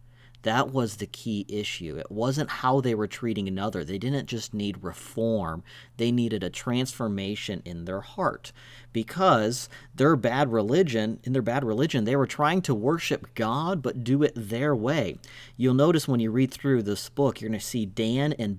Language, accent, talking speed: English, American, 185 wpm